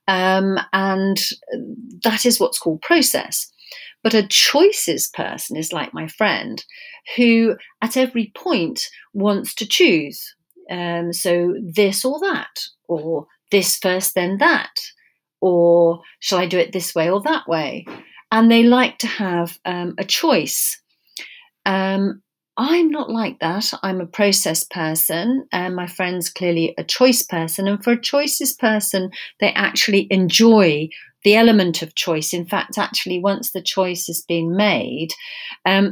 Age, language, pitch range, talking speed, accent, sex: 40-59, English, 180-255 Hz, 145 wpm, British, female